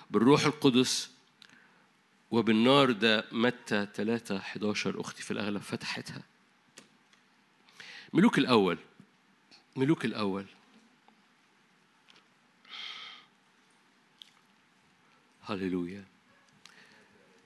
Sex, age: male, 50-69